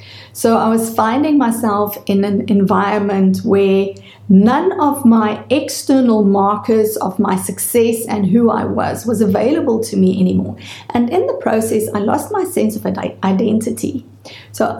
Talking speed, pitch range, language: 150 wpm, 200-240 Hz, English